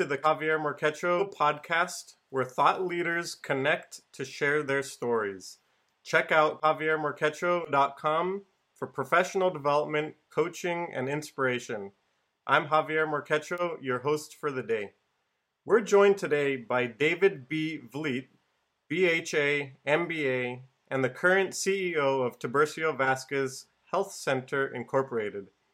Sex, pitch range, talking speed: male, 130-160 Hz, 110 wpm